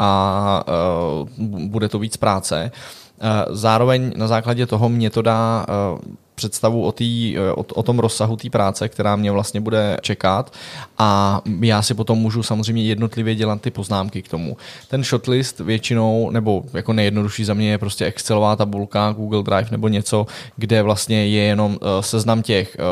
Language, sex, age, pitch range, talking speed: Czech, male, 20-39, 100-115 Hz, 155 wpm